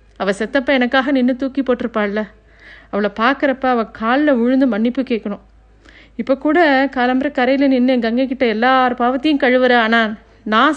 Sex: female